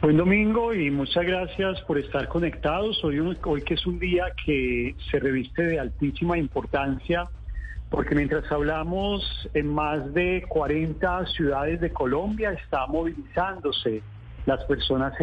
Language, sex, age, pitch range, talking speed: Spanish, male, 40-59, 140-180 Hz, 140 wpm